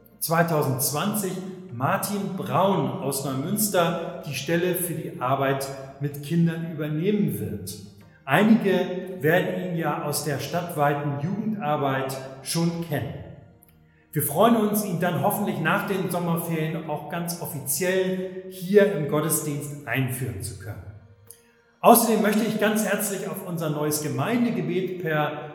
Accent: German